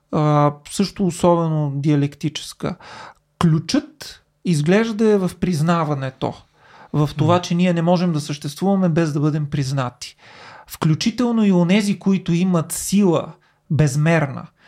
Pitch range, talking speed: 155-195 Hz, 110 wpm